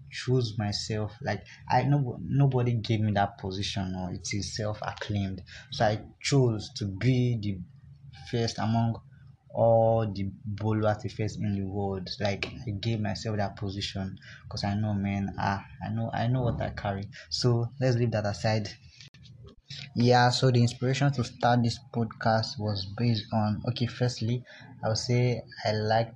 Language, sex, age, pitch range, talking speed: English, male, 20-39, 105-125 Hz, 165 wpm